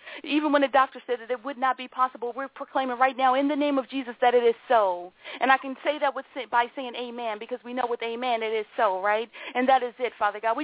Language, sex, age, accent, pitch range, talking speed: English, female, 40-59, American, 200-260 Hz, 275 wpm